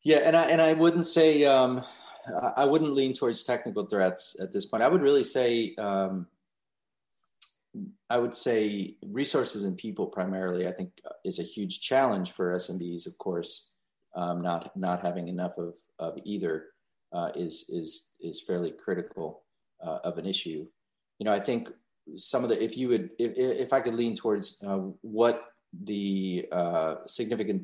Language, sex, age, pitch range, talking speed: English, male, 30-49, 90-120 Hz, 170 wpm